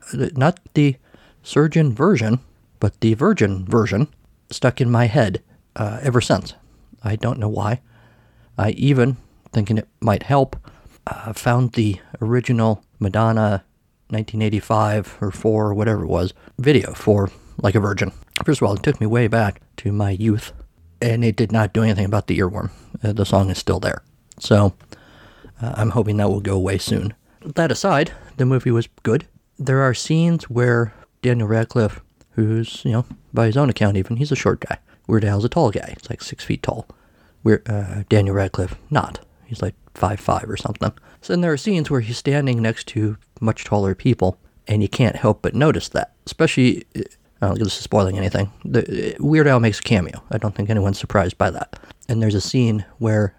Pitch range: 105-125 Hz